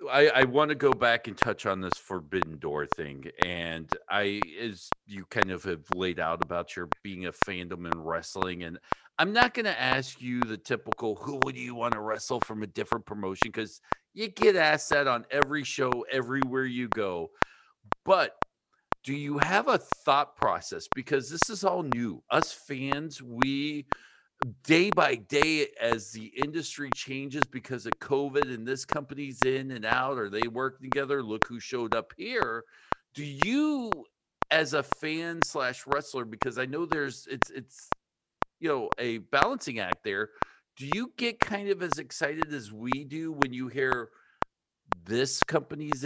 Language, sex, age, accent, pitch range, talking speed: English, male, 50-69, American, 115-150 Hz, 175 wpm